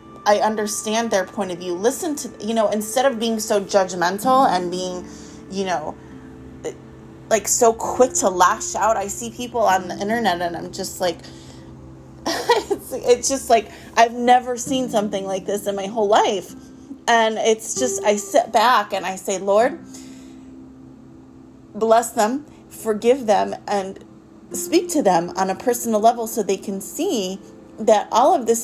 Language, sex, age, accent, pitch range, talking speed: English, female, 30-49, American, 180-230 Hz, 165 wpm